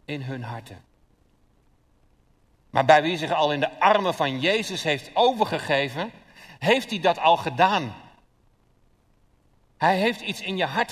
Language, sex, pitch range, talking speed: Dutch, male, 115-160 Hz, 145 wpm